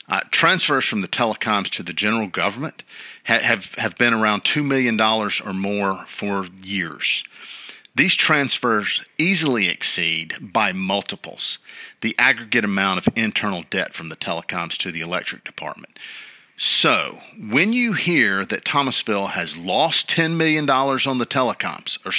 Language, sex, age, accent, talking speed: English, male, 50-69, American, 145 wpm